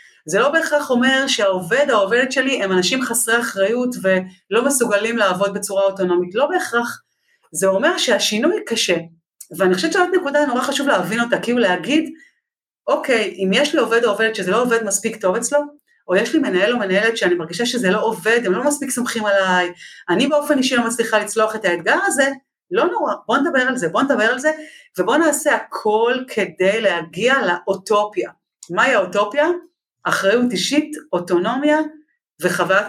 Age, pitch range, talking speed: 40-59, 185-260 Hz, 160 wpm